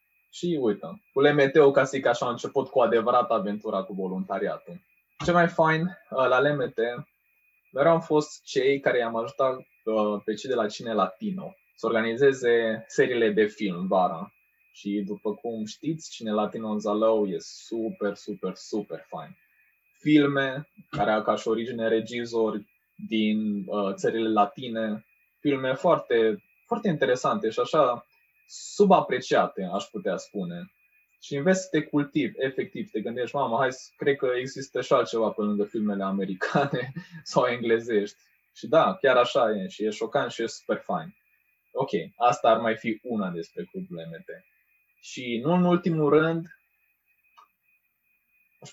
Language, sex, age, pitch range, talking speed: Romanian, male, 20-39, 110-155 Hz, 150 wpm